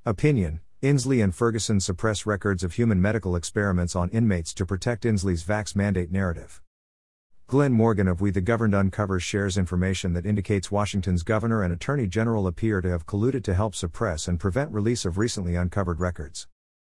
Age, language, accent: 50-69, English, American